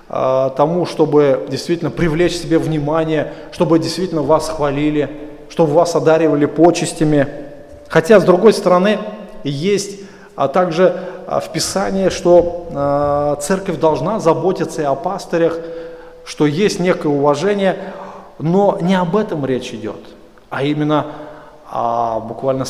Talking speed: 110 wpm